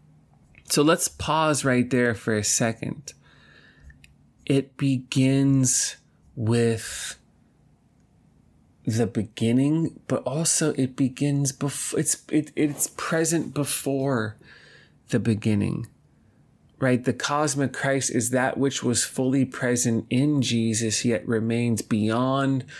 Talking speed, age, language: 105 wpm, 20-39, English